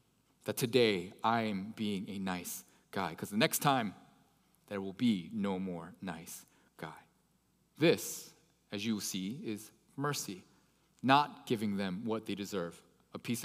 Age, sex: 30-49, male